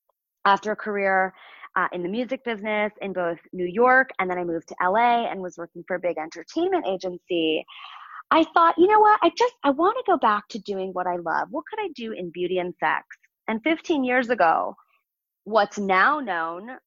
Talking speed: 205 wpm